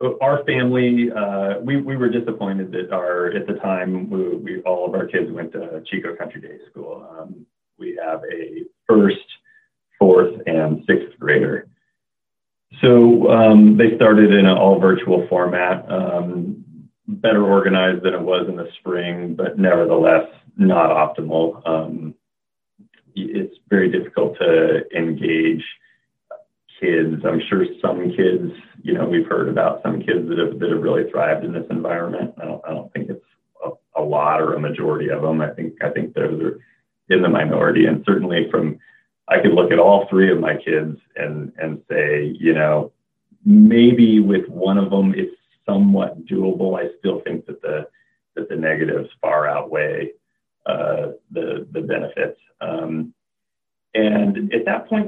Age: 30-49